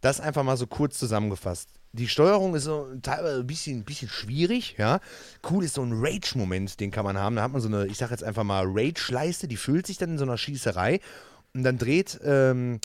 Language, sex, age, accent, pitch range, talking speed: German, male, 30-49, German, 100-130 Hz, 230 wpm